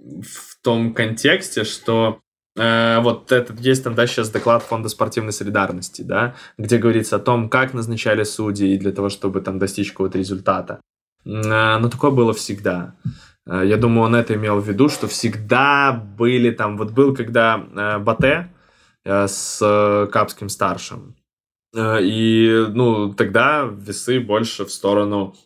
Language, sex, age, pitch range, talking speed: Russian, male, 20-39, 100-120 Hz, 150 wpm